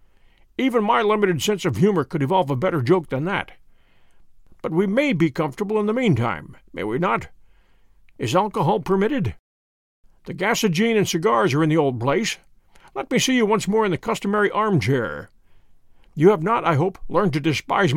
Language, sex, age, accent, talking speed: English, male, 60-79, American, 180 wpm